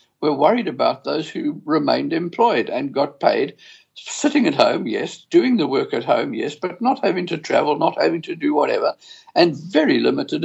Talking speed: 190 wpm